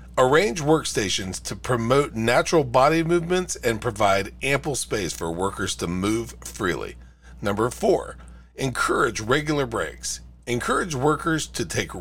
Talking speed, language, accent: 125 wpm, English, American